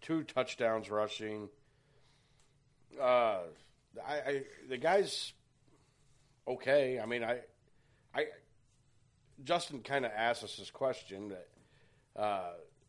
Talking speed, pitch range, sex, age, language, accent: 100 wpm, 105-135 Hz, male, 40-59, English, American